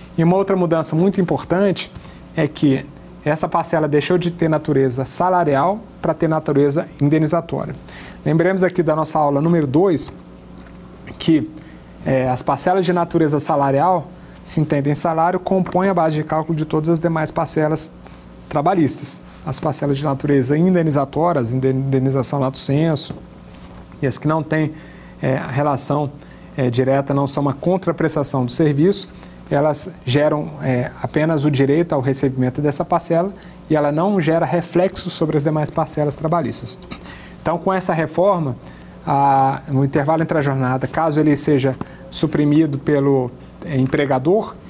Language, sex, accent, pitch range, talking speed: Portuguese, male, Brazilian, 140-170 Hz, 150 wpm